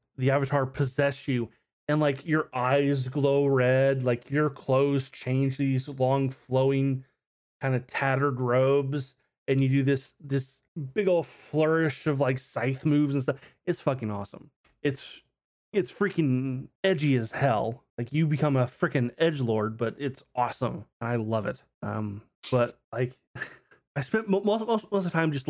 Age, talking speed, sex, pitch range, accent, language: 30-49, 160 wpm, male, 130-155 Hz, American, English